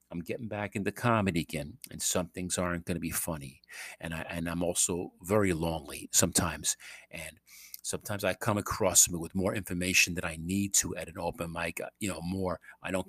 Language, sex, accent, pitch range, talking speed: English, male, American, 85-115 Hz, 200 wpm